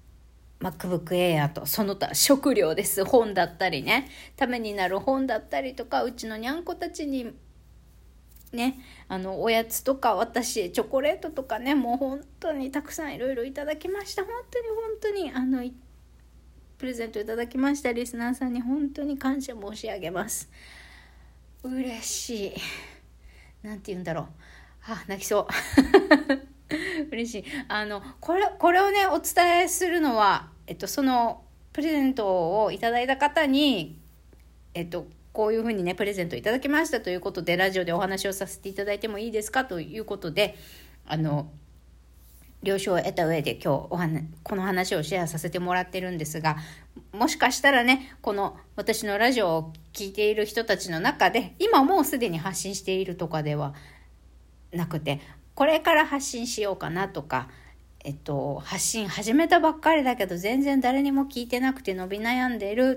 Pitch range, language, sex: 175-270 Hz, Japanese, female